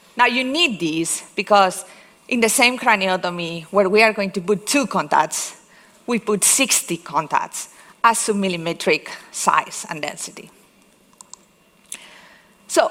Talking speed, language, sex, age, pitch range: 125 wpm, English, female, 40-59, 185-235 Hz